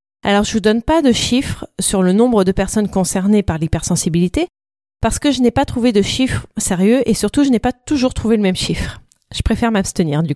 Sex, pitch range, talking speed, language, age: female, 190-260 Hz, 225 wpm, French, 30-49